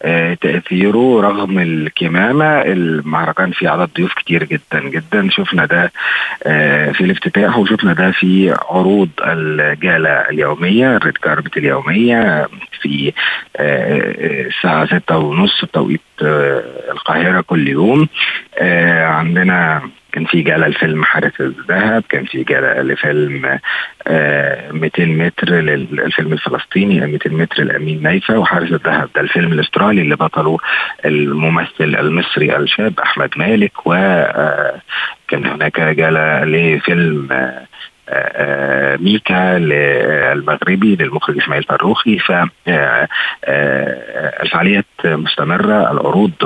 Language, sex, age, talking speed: Arabic, male, 50-69, 105 wpm